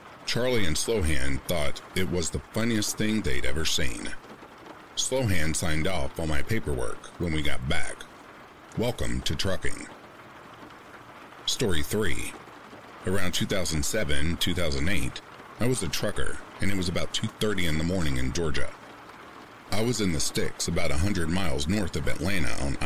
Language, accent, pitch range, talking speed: English, American, 80-100 Hz, 145 wpm